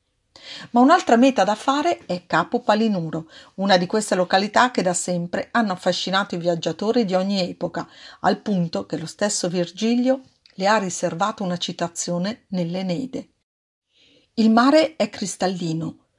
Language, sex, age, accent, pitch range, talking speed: Italian, female, 50-69, native, 180-240 Hz, 140 wpm